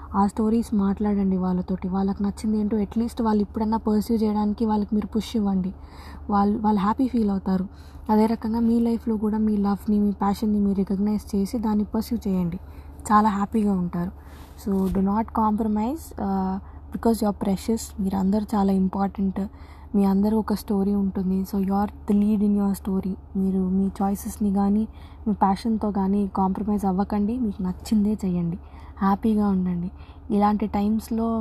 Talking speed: 150 wpm